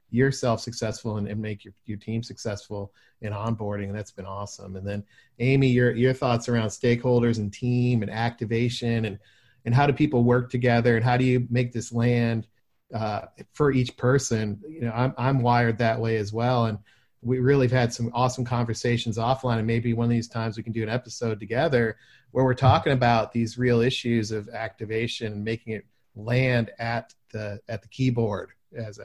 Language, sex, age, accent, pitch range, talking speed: English, male, 40-59, American, 110-125 Hz, 195 wpm